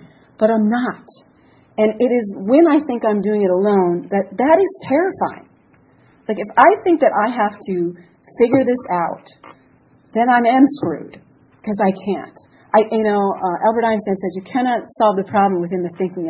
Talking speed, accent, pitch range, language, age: 180 wpm, American, 195-235 Hz, English, 40-59